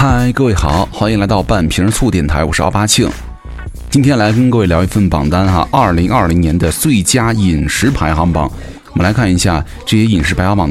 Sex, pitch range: male, 85-115 Hz